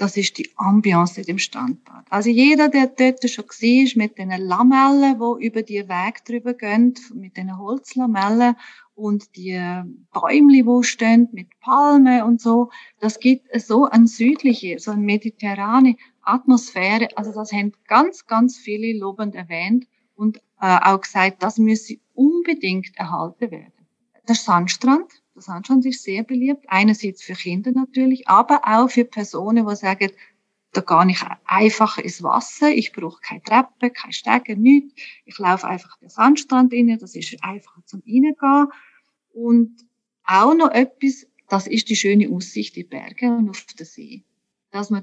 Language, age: German, 40-59